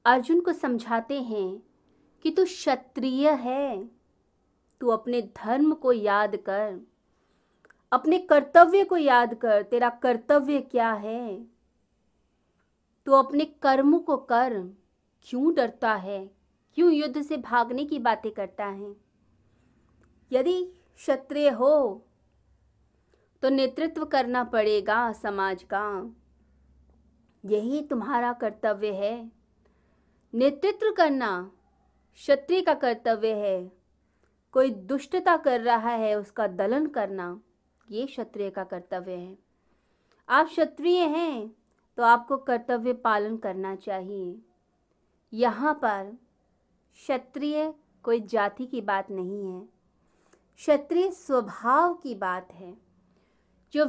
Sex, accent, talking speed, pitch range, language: female, native, 105 wpm, 205-285 Hz, Hindi